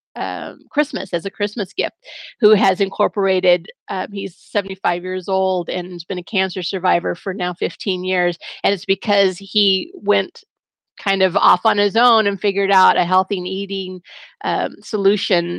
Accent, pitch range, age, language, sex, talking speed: American, 180-210 Hz, 30-49, English, female, 165 wpm